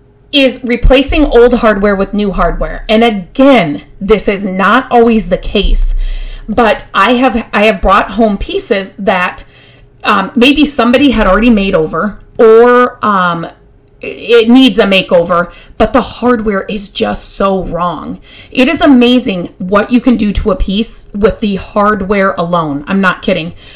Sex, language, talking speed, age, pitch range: female, English, 155 wpm, 30-49, 185-245 Hz